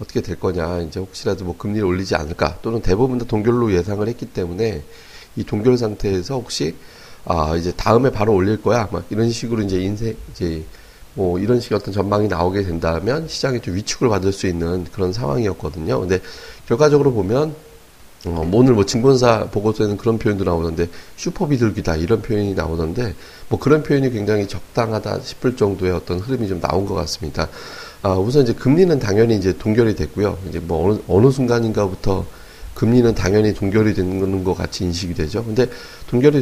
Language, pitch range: Korean, 95-120 Hz